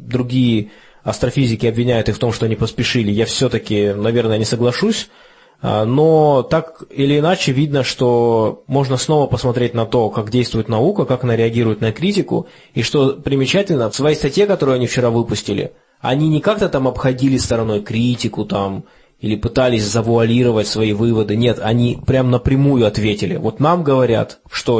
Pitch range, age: 115-140 Hz, 20-39